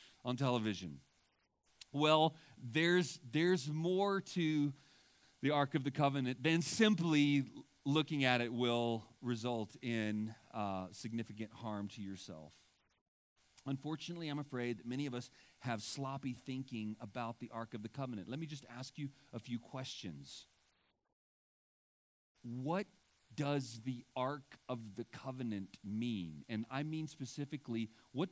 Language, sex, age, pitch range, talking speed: English, male, 40-59, 115-150 Hz, 130 wpm